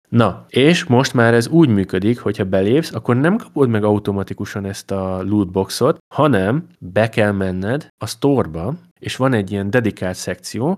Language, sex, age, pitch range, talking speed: Hungarian, male, 20-39, 100-120 Hz, 160 wpm